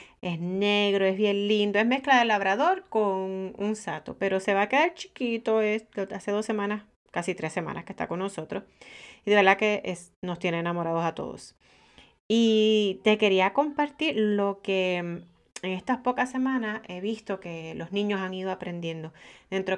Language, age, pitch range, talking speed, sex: Spanish, 30-49, 180-225 Hz, 175 wpm, female